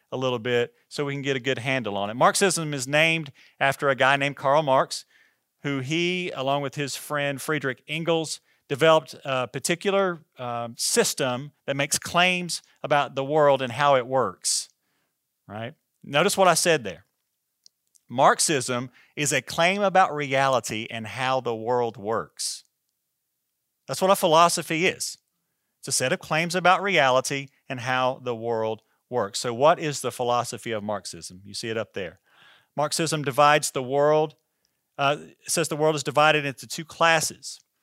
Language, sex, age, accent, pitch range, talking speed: English, male, 40-59, American, 125-155 Hz, 160 wpm